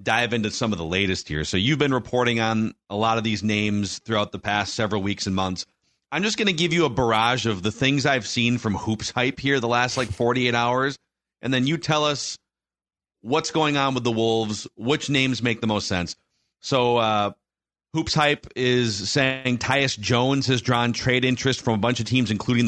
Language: English